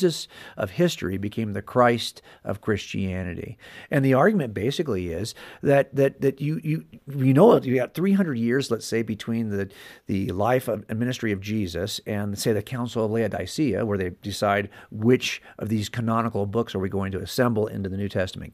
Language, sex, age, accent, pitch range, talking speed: English, male, 50-69, American, 100-140 Hz, 180 wpm